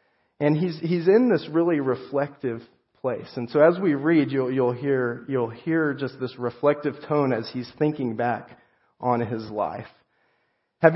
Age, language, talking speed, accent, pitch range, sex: 30-49, English, 165 wpm, American, 120-140 Hz, male